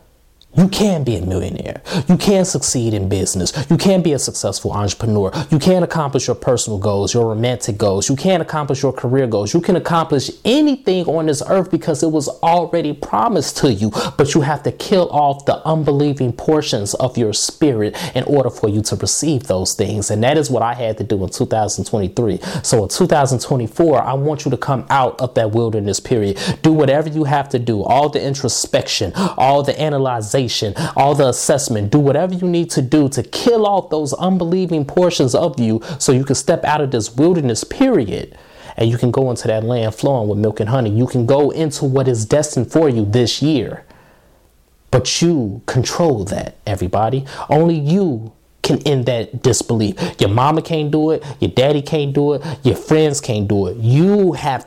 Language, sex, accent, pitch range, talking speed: English, male, American, 110-155 Hz, 195 wpm